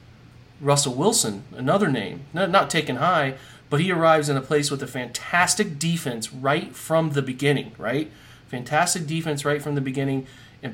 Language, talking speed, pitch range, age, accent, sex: English, 170 wpm, 130-155 Hz, 30-49, American, male